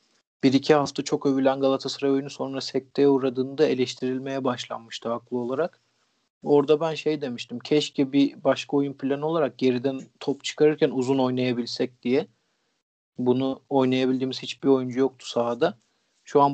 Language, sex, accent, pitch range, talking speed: Turkish, male, native, 125-140 Hz, 140 wpm